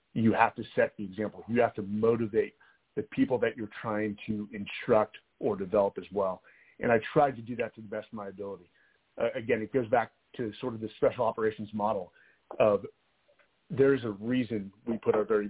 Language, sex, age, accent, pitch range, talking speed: English, male, 40-59, American, 105-125 Hz, 205 wpm